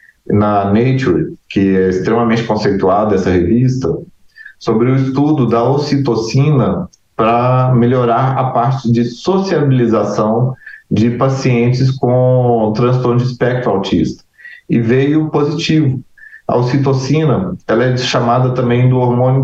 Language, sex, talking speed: Portuguese, male, 115 wpm